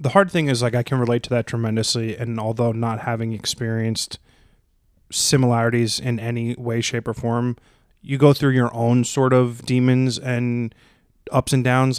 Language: English